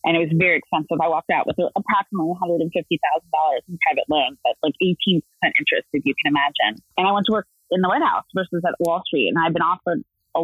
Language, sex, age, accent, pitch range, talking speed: English, female, 30-49, American, 160-200 Hz, 235 wpm